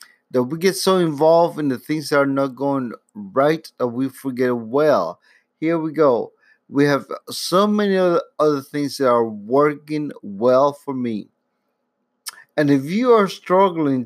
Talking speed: 160 wpm